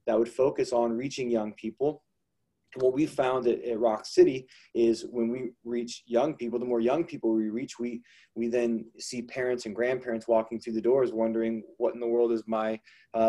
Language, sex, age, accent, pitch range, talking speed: English, male, 20-39, American, 120-145 Hz, 210 wpm